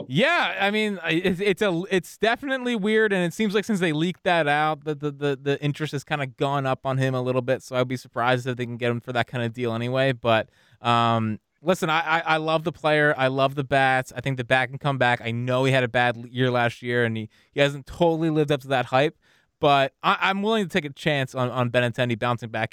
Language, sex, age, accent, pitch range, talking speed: English, male, 20-39, American, 120-160 Hz, 260 wpm